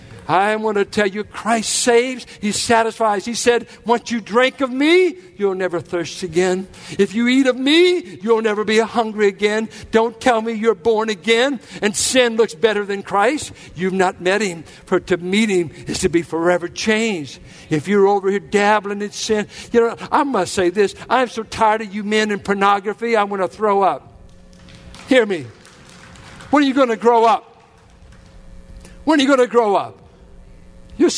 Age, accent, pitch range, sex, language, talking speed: 60-79, American, 170-230 Hz, male, English, 190 wpm